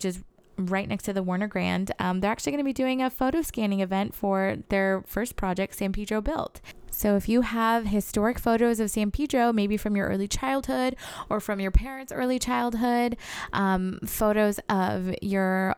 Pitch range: 190-220 Hz